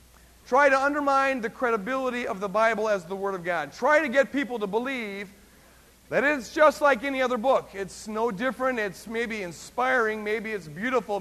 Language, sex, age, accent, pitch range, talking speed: English, male, 50-69, American, 205-260 Hz, 185 wpm